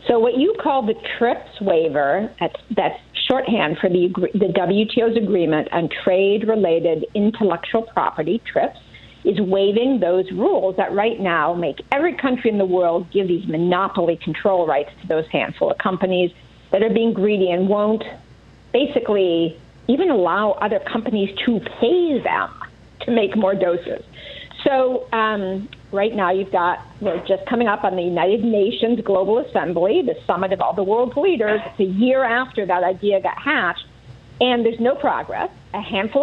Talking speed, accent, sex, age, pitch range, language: 160 wpm, American, female, 50-69, 185-240 Hz, English